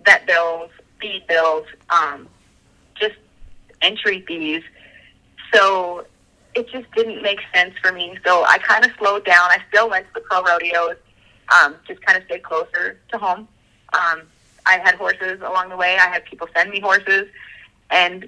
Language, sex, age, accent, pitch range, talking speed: English, female, 30-49, American, 175-215 Hz, 165 wpm